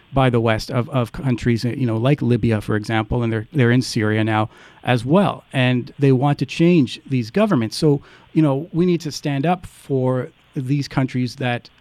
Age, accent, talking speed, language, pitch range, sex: 40-59, American, 200 wpm, English, 125-155 Hz, male